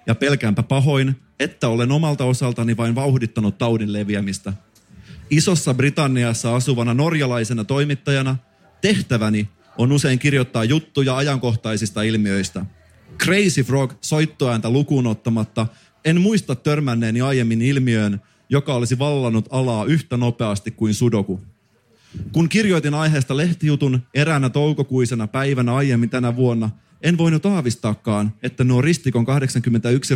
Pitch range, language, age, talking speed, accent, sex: 115-140 Hz, Finnish, 30-49, 115 wpm, native, male